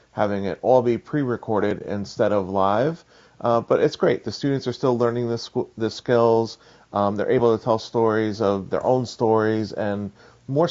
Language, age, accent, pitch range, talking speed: English, 40-59, American, 105-120 Hz, 190 wpm